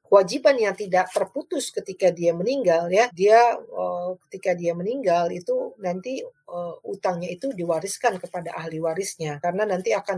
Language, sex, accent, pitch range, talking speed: Indonesian, female, native, 175-205 Hz, 145 wpm